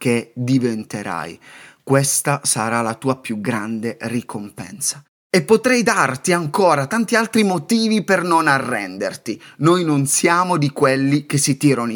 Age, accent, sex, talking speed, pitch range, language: 30-49, native, male, 135 wpm, 125-165 Hz, Italian